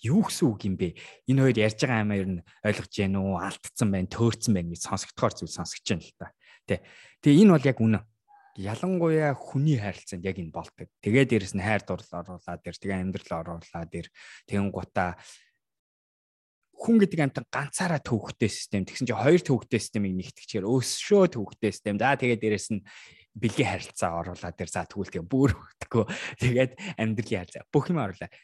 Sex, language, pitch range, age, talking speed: male, English, 95-130 Hz, 20-39, 85 wpm